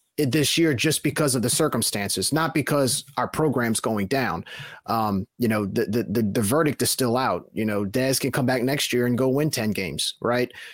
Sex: male